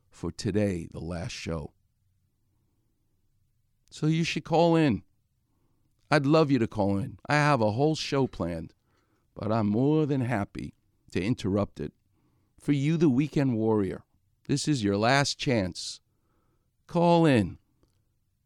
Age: 50-69